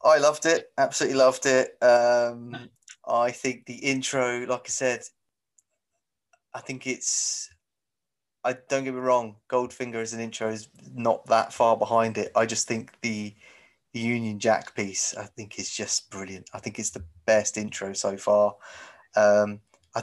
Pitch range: 105-125 Hz